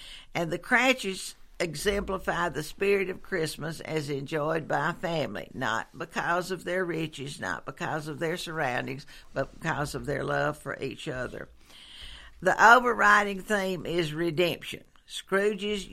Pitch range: 160-205 Hz